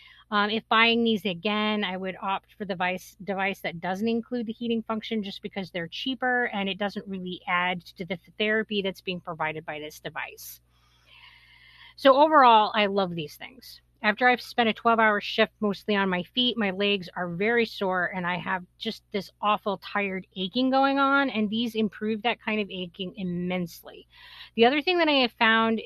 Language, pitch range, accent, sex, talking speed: English, 190-235 Hz, American, female, 190 wpm